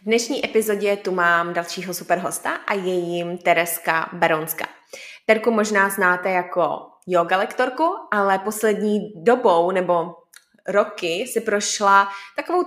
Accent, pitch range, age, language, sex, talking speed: native, 180-210 Hz, 20-39, Czech, female, 120 wpm